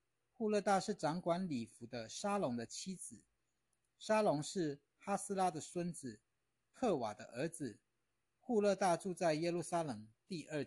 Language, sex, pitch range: Chinese, male, 120-170 Hz